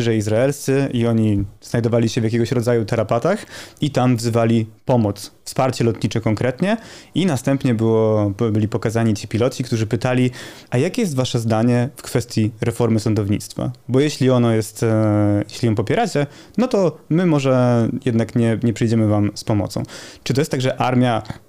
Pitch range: 110-125 Hz